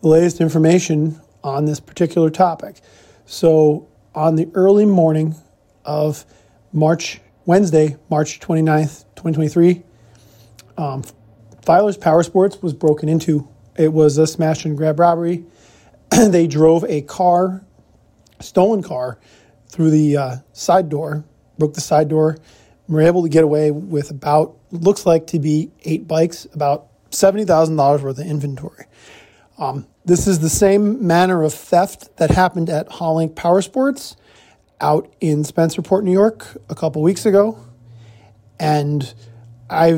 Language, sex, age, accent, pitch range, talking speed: English, male, 40-59, American, 145-170 Hz, 140 wpm